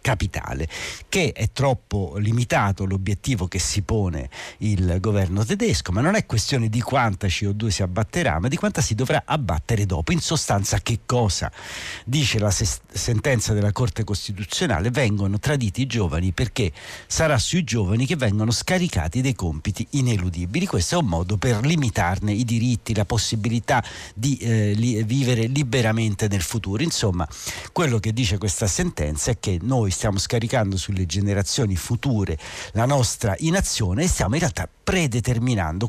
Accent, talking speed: native, 150 wpm